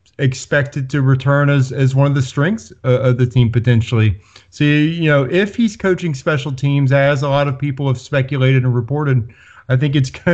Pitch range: 120-135 Hz